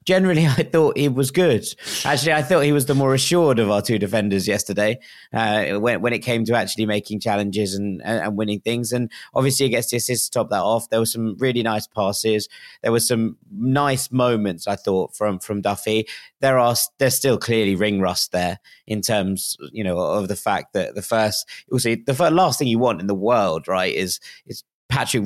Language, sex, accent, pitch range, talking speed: English, male, British, 105-130 Hz, 215 wpm